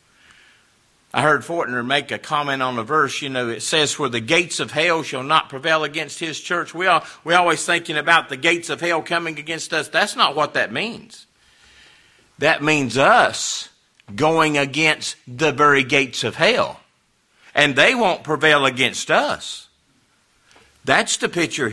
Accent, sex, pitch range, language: American, male, 150-225 Hz, English